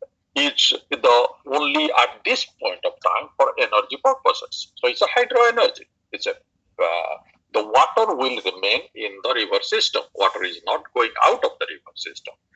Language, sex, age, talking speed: Amharic, male, 50-69, 170 wpm